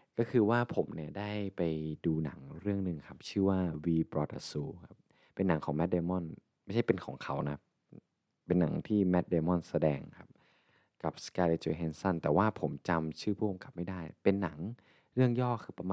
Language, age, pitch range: Thai, 20-39, 80-100 Hz